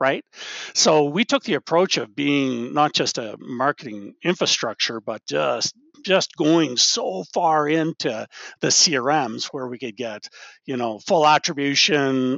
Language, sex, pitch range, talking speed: English, male, 135-190 Hz, 145 wpm